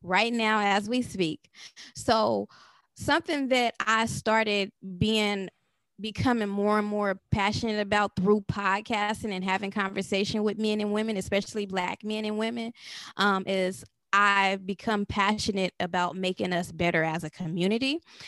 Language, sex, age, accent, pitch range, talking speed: English, female, 20-39, American, 185-215 Hz, 140 wpm